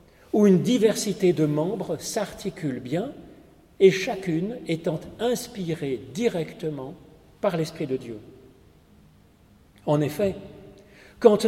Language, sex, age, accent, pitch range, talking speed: French, male, 40-59, French, 145-205 Hz, 100 wpm